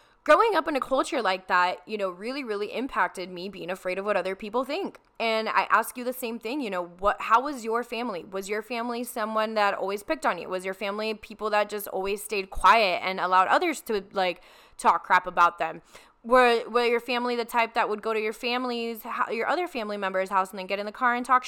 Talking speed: 240 wpm